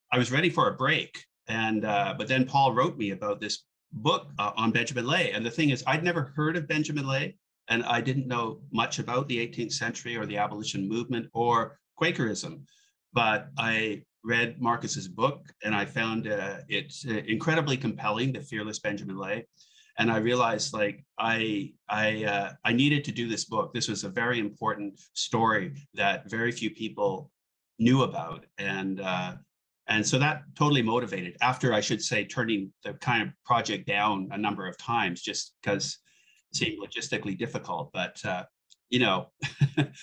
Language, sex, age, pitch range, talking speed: English, male, 40-59, 110-145 Hz, 175 wpm